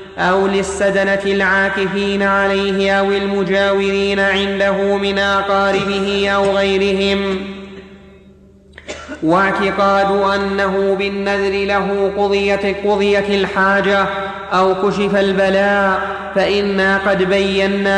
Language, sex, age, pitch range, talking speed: Arabic, male, 30-49, 195-205 Hz, 80 wpm